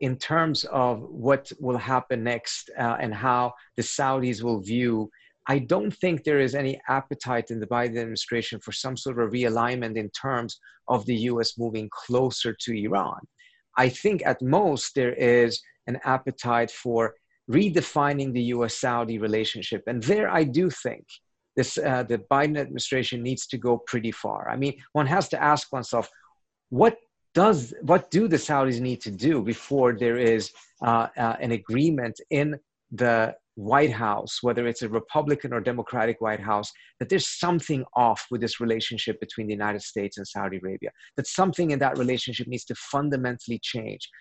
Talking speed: 170 wpm